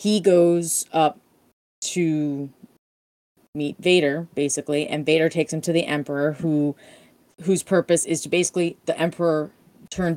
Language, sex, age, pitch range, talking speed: English, female, 20-39, 150-175 Hz, 135 wpm